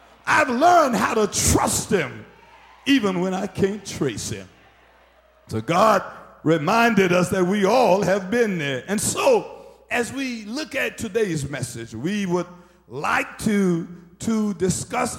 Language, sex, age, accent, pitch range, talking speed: English, male, 50-69, American, 180-255 Hz, 140 wpm